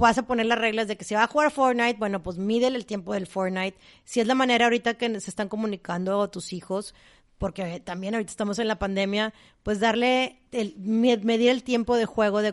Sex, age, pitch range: female, 30-49, 185-225 Hz